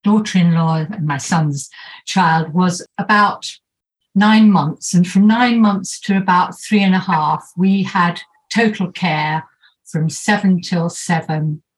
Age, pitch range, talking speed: 60-79, 165-200 Hz, 140 wpm